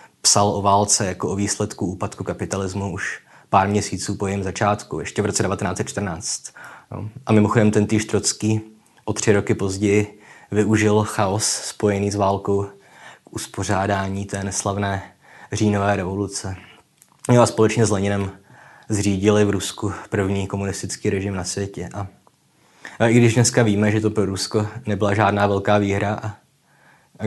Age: 20-39